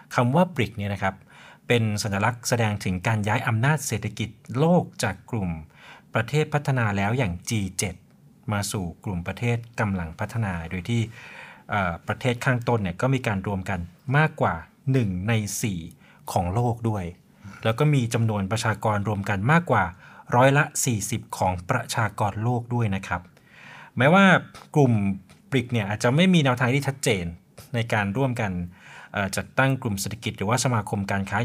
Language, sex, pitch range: Thai, male, 100-125 Hz